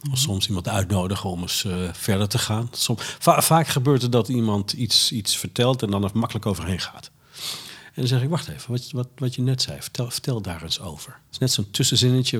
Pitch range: 100-140 Hz